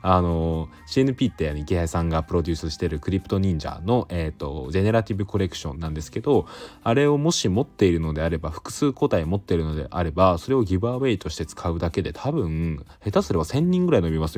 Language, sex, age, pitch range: Japanese, male, 20-39, 80-105 Hz